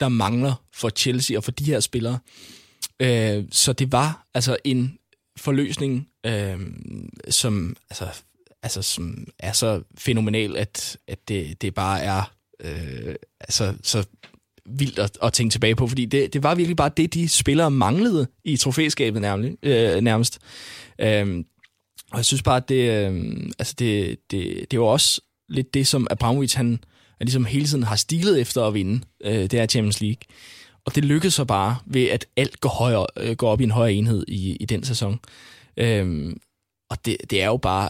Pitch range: 105-135 Hz